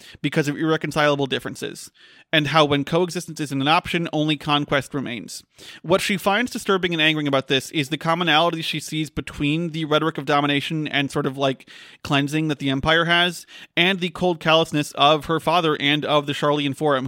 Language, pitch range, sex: English, 145-175 Hz, male